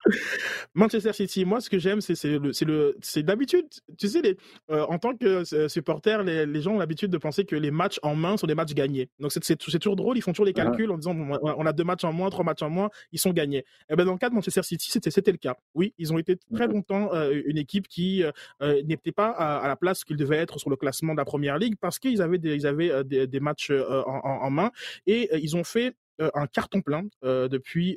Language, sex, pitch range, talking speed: French, male, 140-190 Hz, 270 wpm